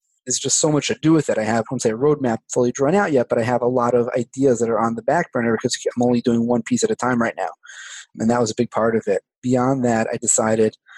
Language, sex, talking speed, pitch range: English, male, 300 wpm, 115-135 Hz